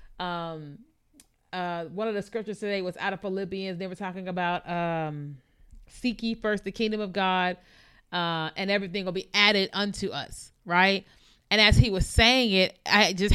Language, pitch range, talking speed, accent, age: English, 185-220 Hz, 180 wpm, American, 30-49